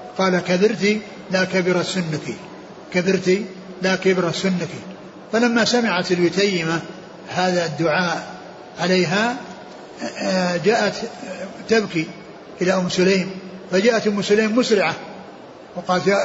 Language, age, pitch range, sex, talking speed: Arabic, 60-79, 180-205 Hz, male, 90 wpm